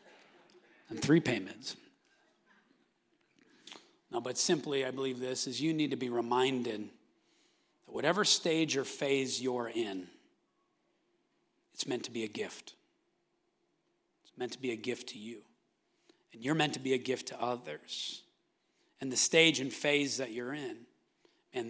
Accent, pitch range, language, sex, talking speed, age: American, 135-210 Hz, English, male, 150 wpm, 40-59